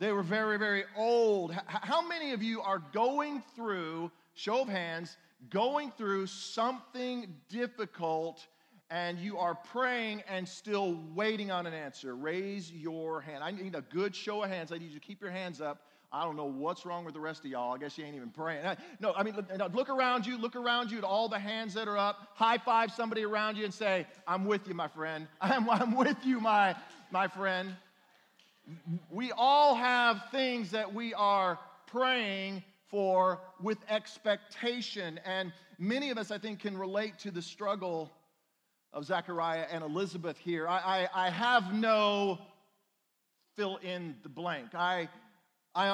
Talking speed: 180 wpm